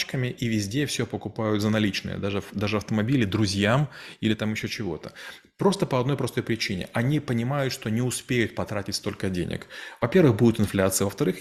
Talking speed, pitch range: 165 wpm, 105-130 Hz